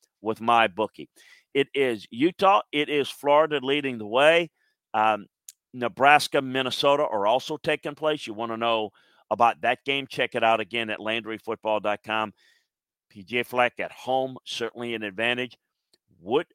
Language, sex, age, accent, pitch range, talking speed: English, male, 40-59, American, 110-135 Hz, 145 wpm